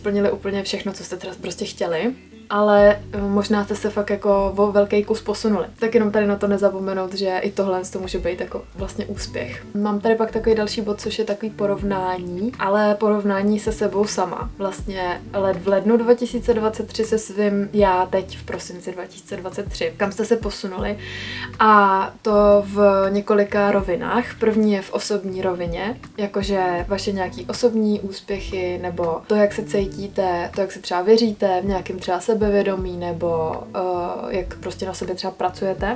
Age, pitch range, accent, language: 20-39, 185-210 Hz, native, Czech